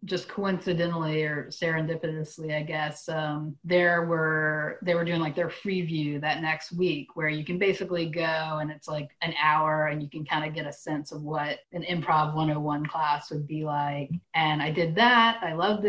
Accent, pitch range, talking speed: American, 155-185 Hz, 195 wpm